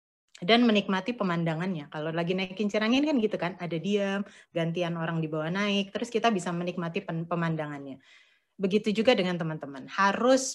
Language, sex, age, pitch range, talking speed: Indonesian, female, 30-49, 170-220 Hz, 155 wpm